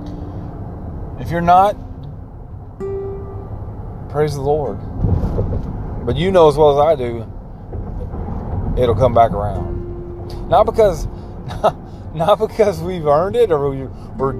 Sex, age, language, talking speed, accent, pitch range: male, 30-49, English, 115 wpm, American, 95-130 Hz